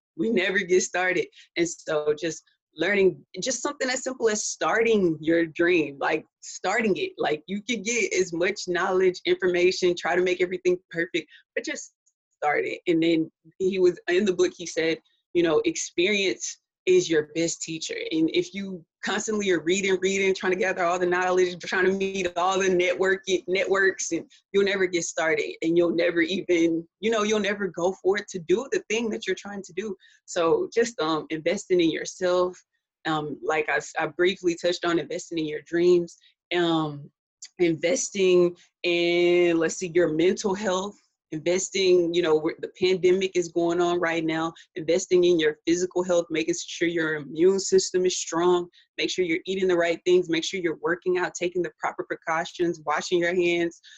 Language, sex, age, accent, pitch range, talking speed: English, female, 20-39, American, 170-200 Hz, 180 wpm